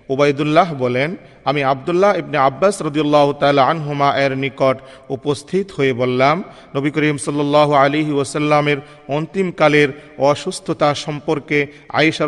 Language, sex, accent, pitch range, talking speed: Bengali, male, native, 135-150 Hz, 110 wpm